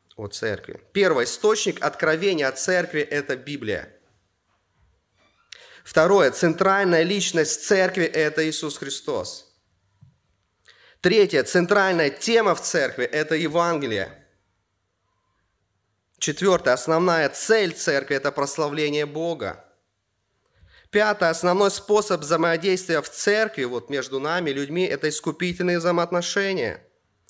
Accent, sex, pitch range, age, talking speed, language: native, male, 140-190 Hz, 30-49, 110 wpm, Russian